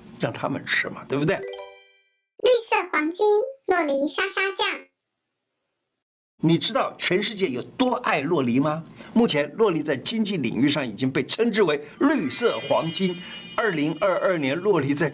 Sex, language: male, Chinese